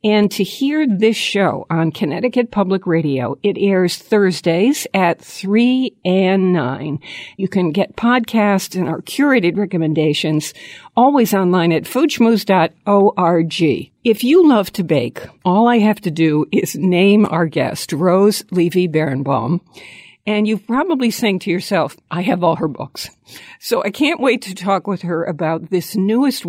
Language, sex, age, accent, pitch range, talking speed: English, female, 60-79, American, 170-220 Hz, 155 wpm